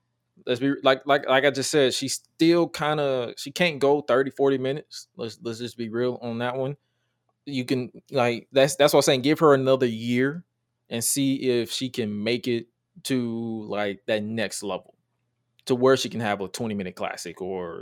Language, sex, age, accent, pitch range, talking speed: English, male, 20-39, American, 110-130 Hz, 200 wpm